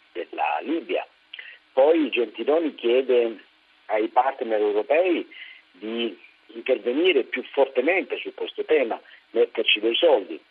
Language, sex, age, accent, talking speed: Italian, male, 50-69, native, 105 wpm